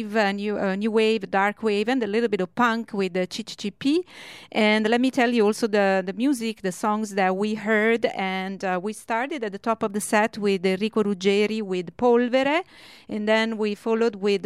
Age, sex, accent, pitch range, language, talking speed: 40-59, female, Italian, 195-235 Hz, English, 215 wpm